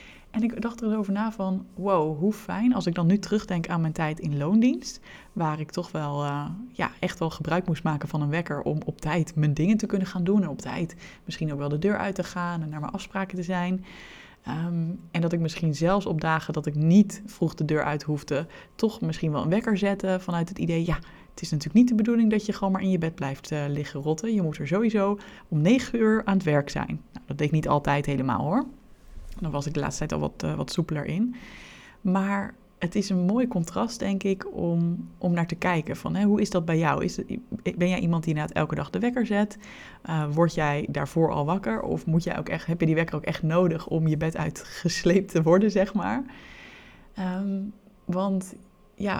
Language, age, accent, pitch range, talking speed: Dutch, 20-39, Dutch, 160-200 Hz, 240 wpm